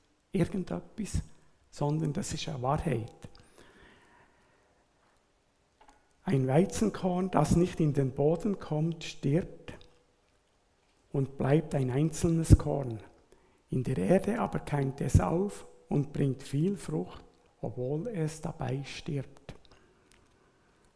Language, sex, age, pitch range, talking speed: German, male, 60-79, 130-165 Hz, 100 wpm